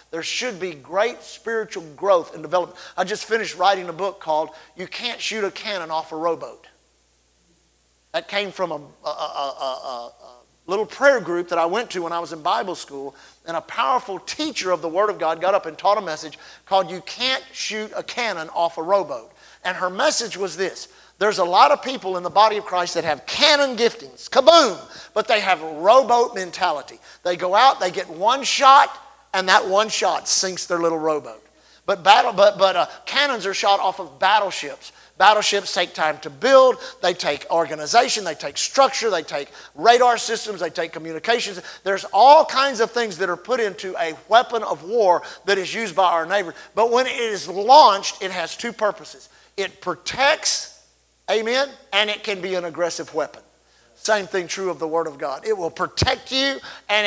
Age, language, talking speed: 50-69, English, 195 wpm